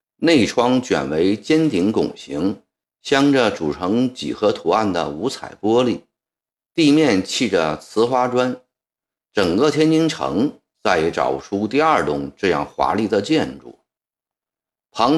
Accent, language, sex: native, Chinese, male